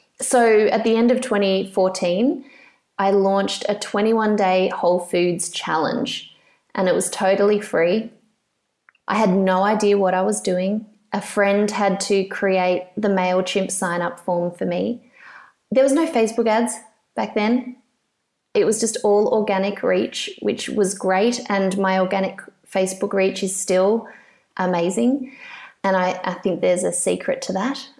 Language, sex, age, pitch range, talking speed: English, female, 20-39, 190-245 Hz, 150 wpm